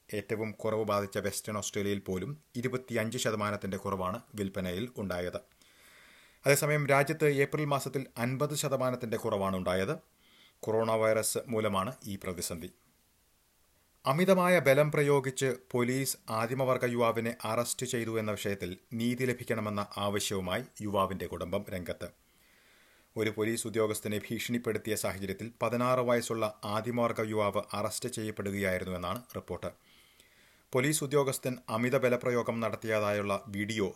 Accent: native